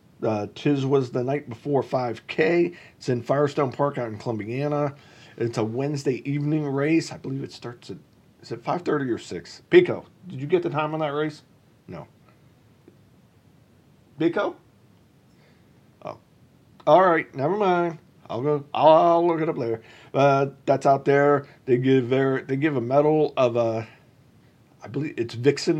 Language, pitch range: English, 115-145 Hz